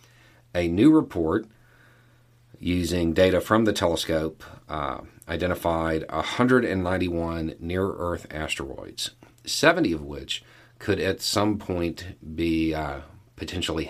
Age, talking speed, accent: 40-59, 100 wpm, American